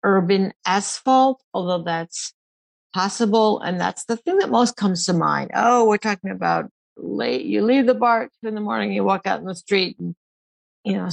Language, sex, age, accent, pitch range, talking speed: English, female, 50-69, American, 180-245 Hz, 190 wpm